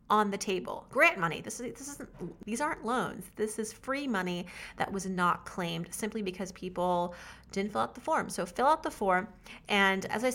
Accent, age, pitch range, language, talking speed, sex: American, 30-49, 180-220 Hz, English, 210 wpm, female